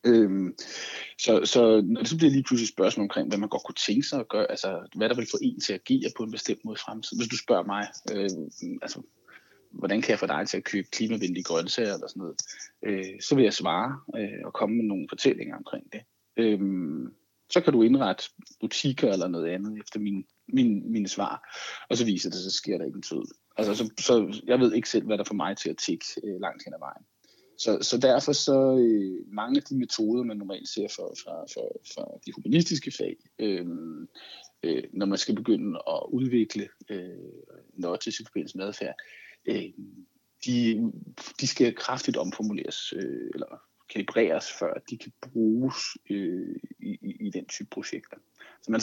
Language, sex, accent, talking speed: Danish, male, native, 195 wpm